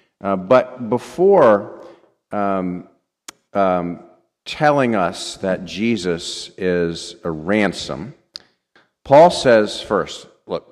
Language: English